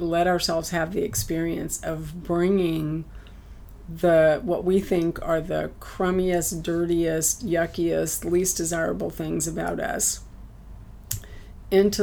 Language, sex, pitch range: English, female, 160-195 Hz